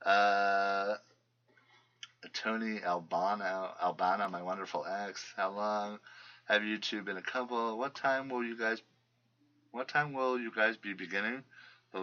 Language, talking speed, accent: English, 140 wpm, American